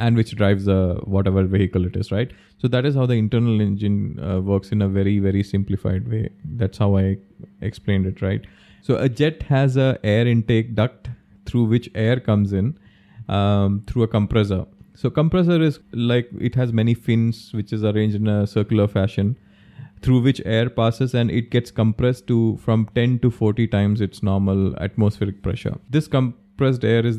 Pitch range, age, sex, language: 100-120 Hz, 20-39, male, English